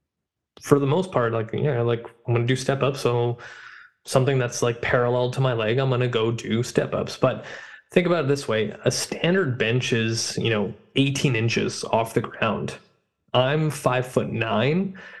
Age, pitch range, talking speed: 20-39, 120-140 Hz, 195 wpm